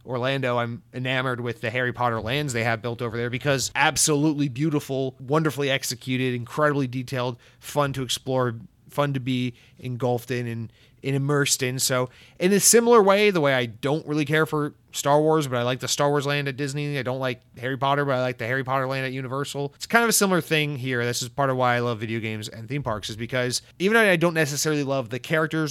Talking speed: 230 wpm